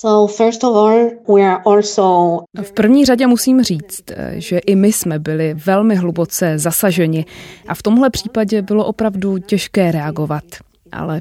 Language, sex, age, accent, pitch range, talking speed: Czech, female, 20-39, native, 165-205 Hz, 120 wpm